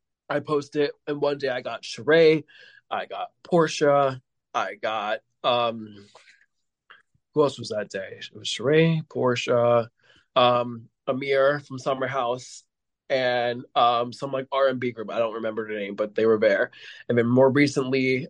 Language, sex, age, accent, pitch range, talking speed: English, male, 20-39, American, 120-155 Hz, 155 wpm